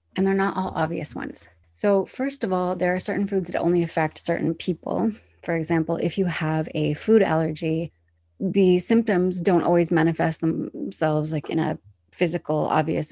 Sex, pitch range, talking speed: female, 155-180 Hz, 175 wpm